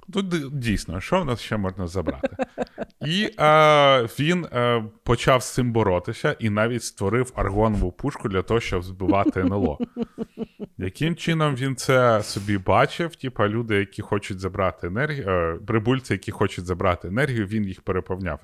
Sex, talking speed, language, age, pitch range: male, 155 wpm, Ukrainian, 30-49, 95-130 Hz